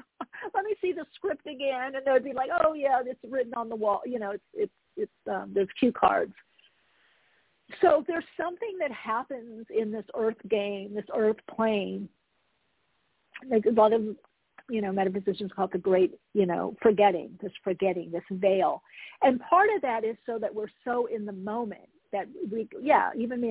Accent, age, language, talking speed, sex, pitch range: American, 50-69, English, 185 wpm, female, 205-265 Hz